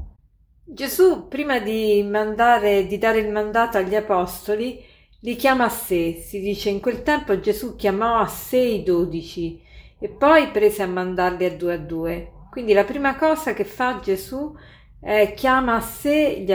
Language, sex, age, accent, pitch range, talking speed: Italian, female, 40-59, native, 190-245 Hz, 165 wpm